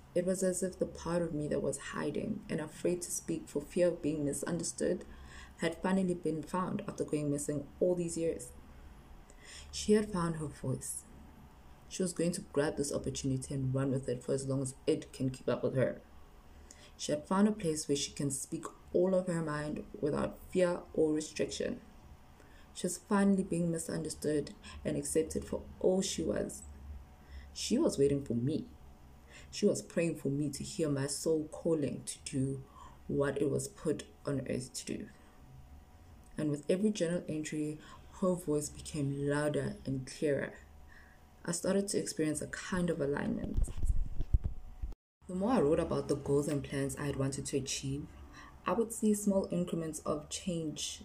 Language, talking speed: English, 175 wpm